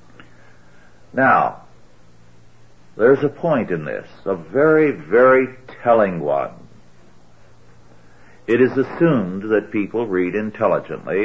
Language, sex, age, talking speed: English, male, 60-79, 95 wpm